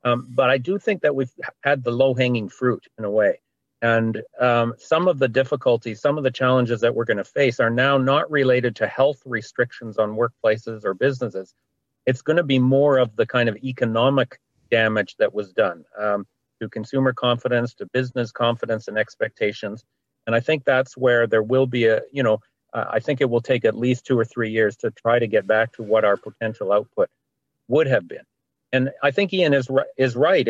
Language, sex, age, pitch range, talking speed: English, male, 40-59, 115-135 Hz, 210 wpm